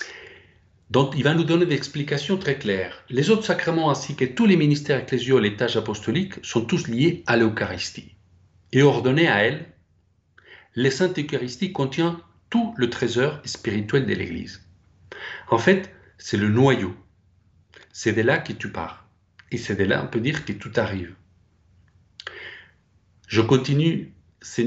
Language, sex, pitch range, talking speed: French, male, 95-145 Hz, 160 wpm